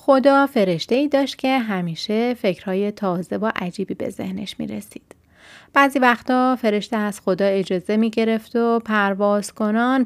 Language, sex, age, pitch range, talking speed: Persian, female, 30-49, 190-235 Hz, 145 wpm